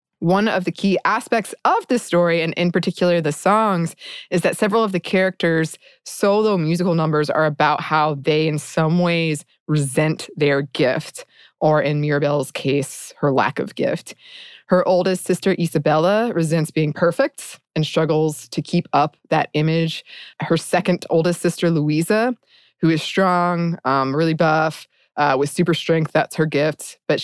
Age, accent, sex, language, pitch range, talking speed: 20-39, American, female, English, 155-210 Hz, 160 wpm